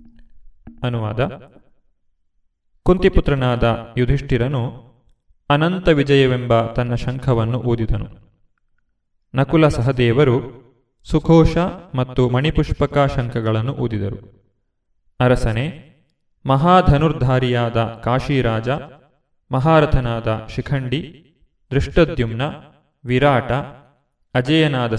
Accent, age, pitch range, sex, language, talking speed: native, 30-49, 120-150 Hz, male, Kannada, 55 wpm